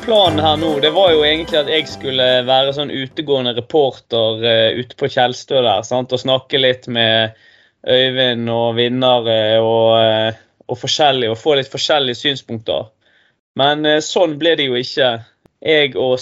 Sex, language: male, English